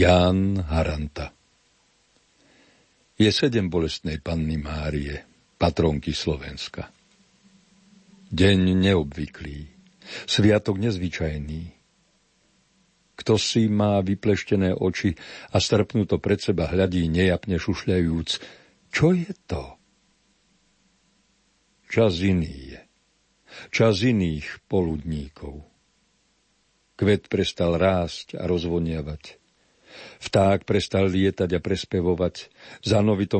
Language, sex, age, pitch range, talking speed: Slovak, male, 60-79, 85-105 Hz, 80 wpm